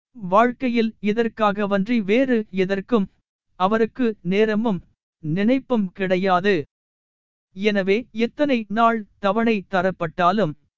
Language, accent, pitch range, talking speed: Tamil, native, 190-235 Hz, 80 wpm